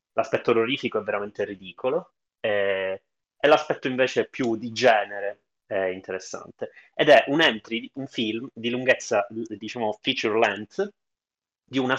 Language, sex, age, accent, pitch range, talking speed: Italian, male, 20-39, native, 100-125 Hz, 135 wpm